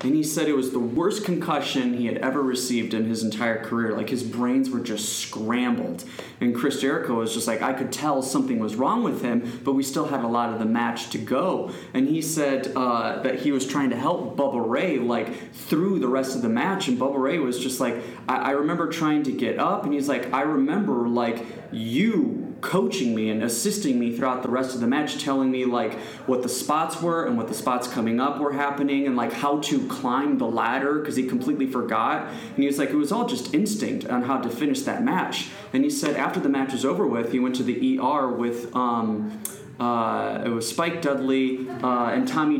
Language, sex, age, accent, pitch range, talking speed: English, male, 20-39, American, 120-155 Hz, 230 wpm